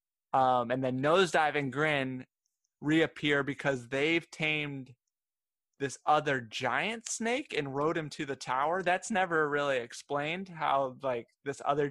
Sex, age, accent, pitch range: male, 20-39, American, 135-160 Hz